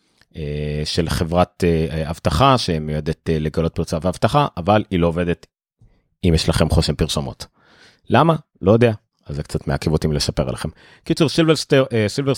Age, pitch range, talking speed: 30-49, 90-120 Hz, 145 wpm